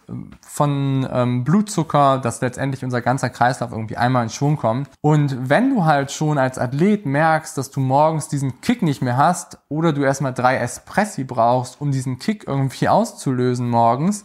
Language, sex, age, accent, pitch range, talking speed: German, male, 20-39, German, 120-145 Hz, 175 wpm